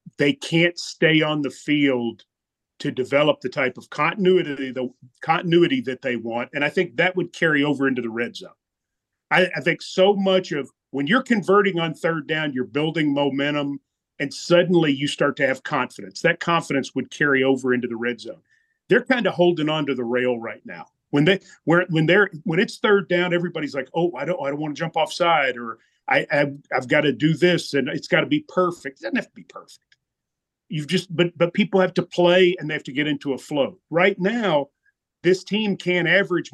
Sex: male